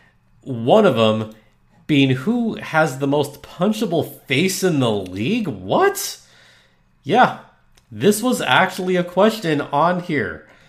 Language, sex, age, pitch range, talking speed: English, male, 30-49, 100-165 Hz, 125 wpm